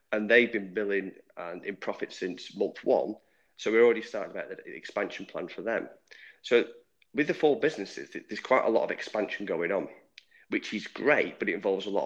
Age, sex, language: 30-49, male, English